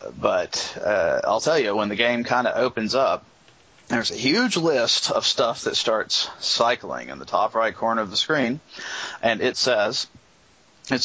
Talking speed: 180 wpm